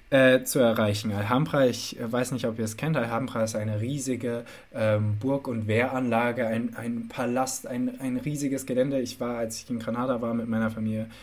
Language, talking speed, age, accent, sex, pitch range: German, 190 wpm, 20-39, German, male, 110-125 Hz